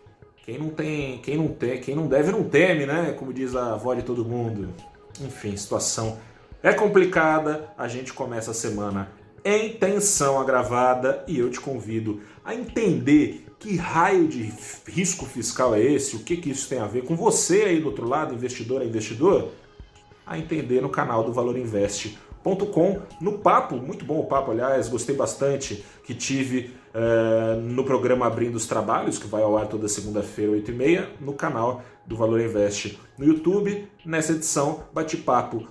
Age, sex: 30-49, male